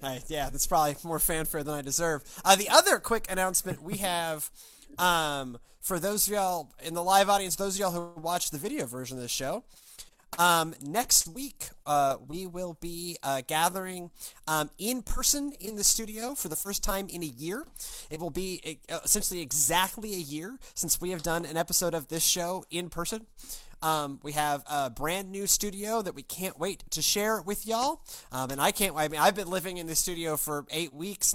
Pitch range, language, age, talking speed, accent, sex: 145-185 Hz, English, 30-49, 200 wpm, American, male